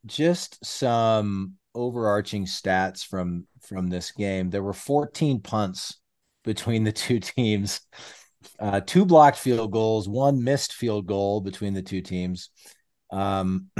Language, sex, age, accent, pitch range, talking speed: English, male, 40-59, American, 95-115 Hz, 130 wpm